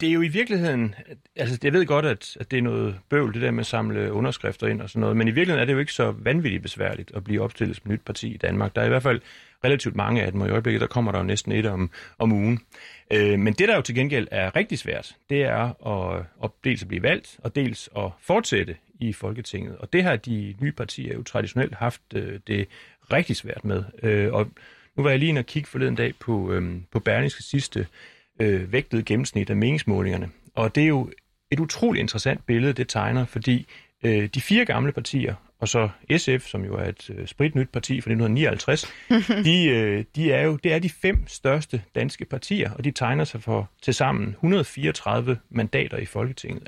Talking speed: 220 wpm